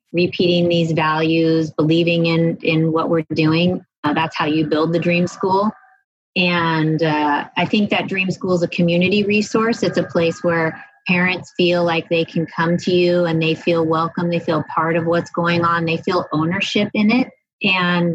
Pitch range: 165-185 Hz